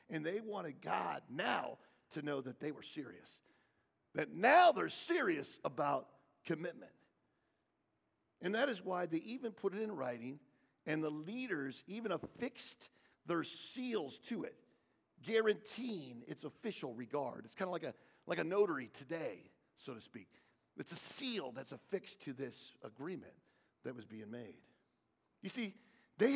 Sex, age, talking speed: male, 50-69, 155 wpm